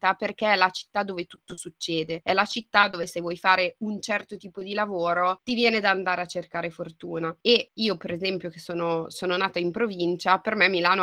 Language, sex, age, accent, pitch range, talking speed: Italian, female, 20-39, native, 175-205 Hz, 210 wpm